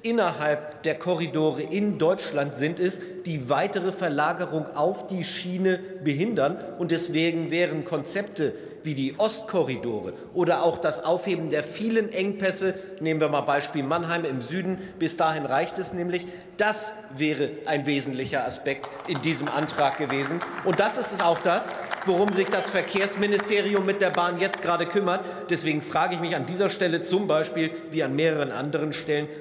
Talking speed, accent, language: 160 wpm, German, German